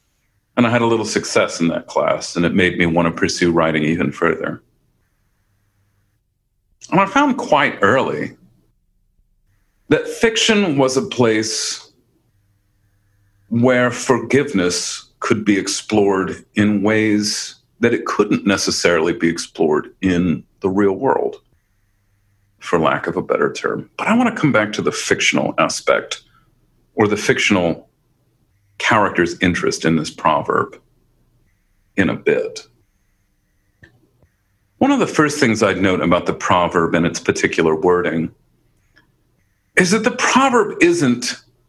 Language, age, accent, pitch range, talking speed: English, 40-59, American, 100-135 Hz, 130 wpm